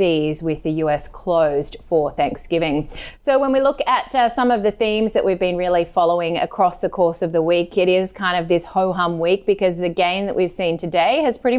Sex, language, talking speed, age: female, English, 225 wpm, 20-39